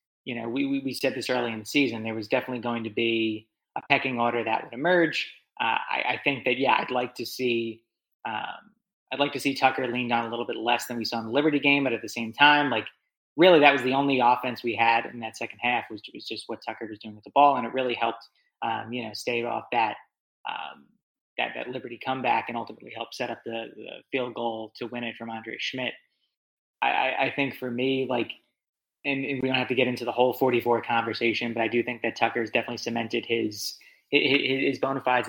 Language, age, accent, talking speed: English, 20-39, American, 245 wpm